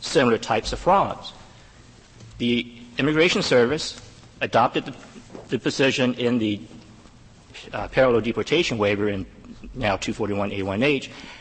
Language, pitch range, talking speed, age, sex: English, 110-130 Hz, 105 wpm, 50-69, male